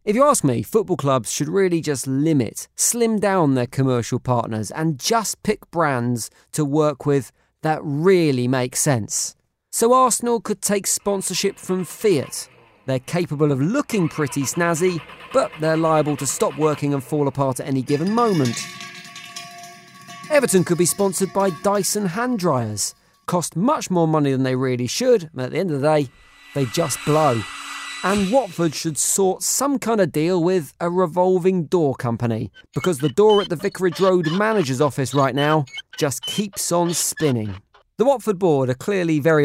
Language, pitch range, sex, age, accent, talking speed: English, 140-195 Hz, male, 40-59, British, 170 wpm